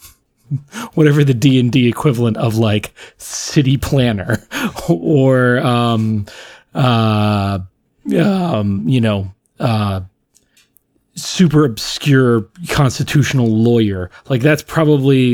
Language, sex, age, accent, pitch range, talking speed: English, male, 30-49, American, 115-150 Hz, 90 wpm